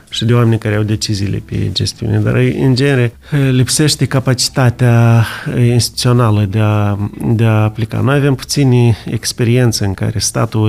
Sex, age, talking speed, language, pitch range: male, 30-49, 145 wpm, Romanian, 105-120 Hz